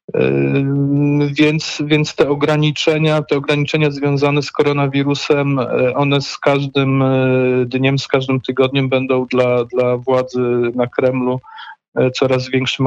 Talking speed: 110 wpm